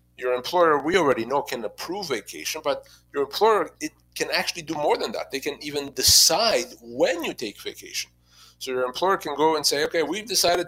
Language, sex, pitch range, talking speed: English, male, 120-170 Hz, 200 wpm